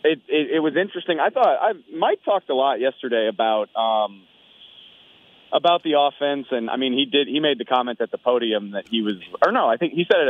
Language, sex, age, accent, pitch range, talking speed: English, male, 30-49, American, 115-145 Hz, 235 wpm